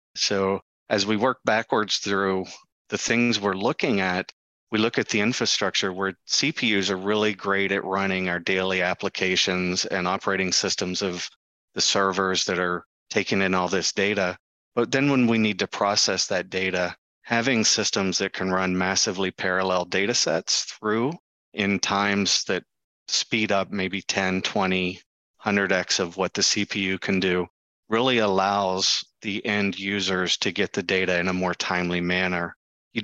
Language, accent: English, American